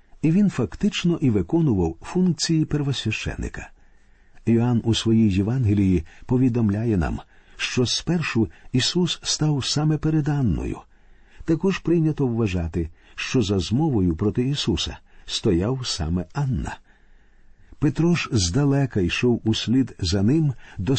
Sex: male